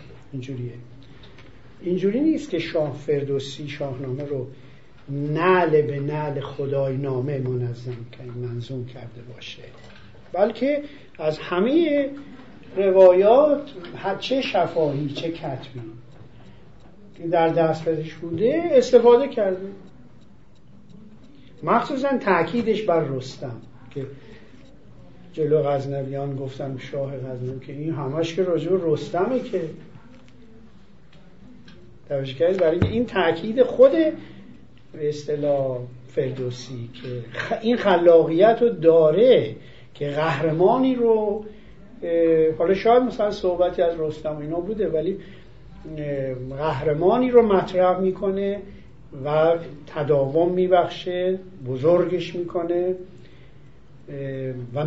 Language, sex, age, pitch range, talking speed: Persian, male, 50-69, 130-180 Hz, 90 wpm